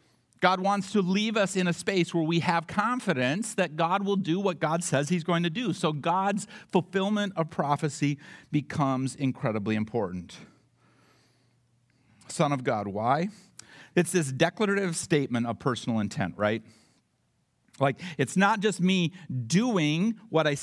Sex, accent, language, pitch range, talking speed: male, American, English, 135-195 Hz, 150 wpm